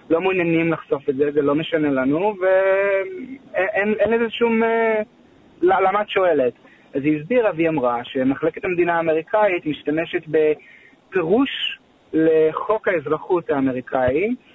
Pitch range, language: 150-200 Hz, Hebrew